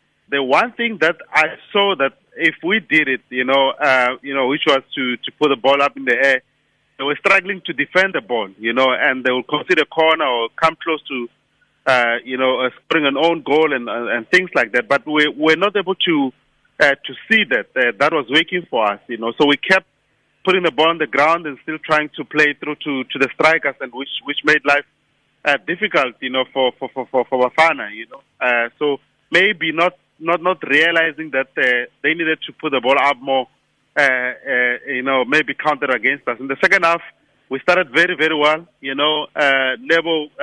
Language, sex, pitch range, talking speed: English, male, 135-165 Hz, 225 wpm